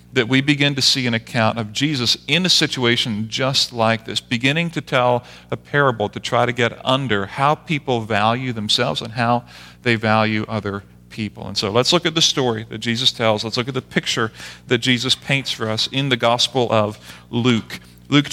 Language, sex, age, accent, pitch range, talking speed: English, male, 40-59, American, 110-135 Hz, 200 wpm